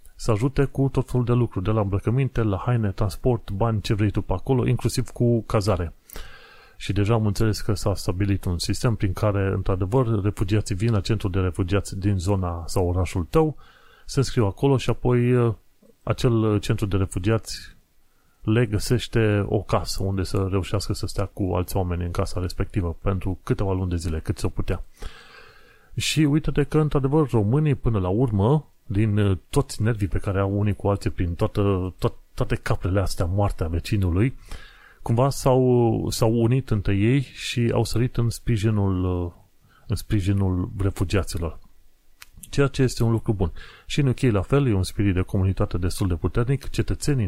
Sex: male